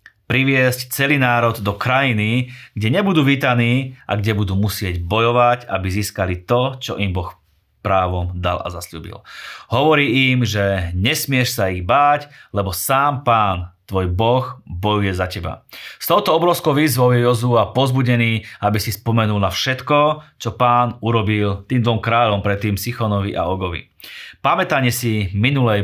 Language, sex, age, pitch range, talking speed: Slovak, male, 30-49, 100-120 Hz, 150 wpm